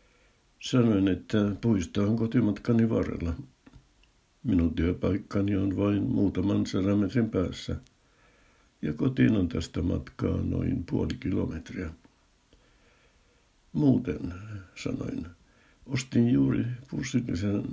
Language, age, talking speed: Finnish, 60-79, 90 wpm